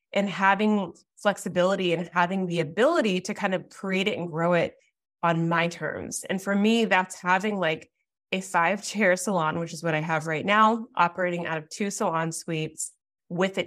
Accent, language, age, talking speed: American, English, 20-39, 190 wpm